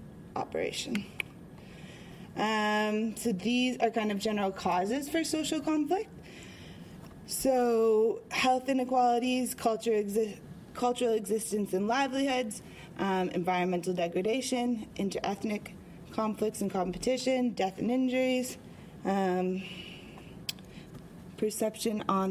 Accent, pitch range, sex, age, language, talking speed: American, 185-240 Hz, female, 20-39, English, 90 wpm